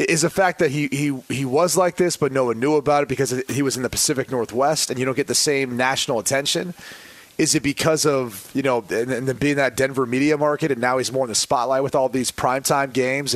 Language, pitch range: English, 130-160 Hz